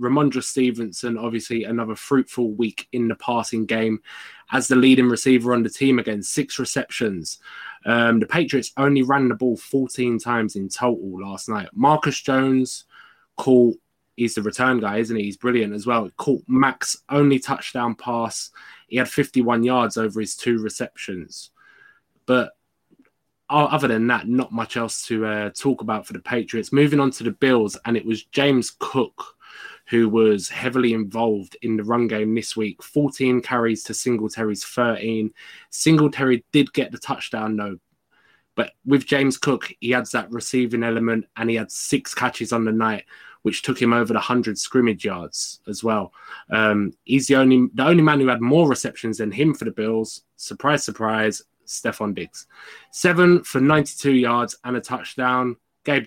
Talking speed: 170 wpm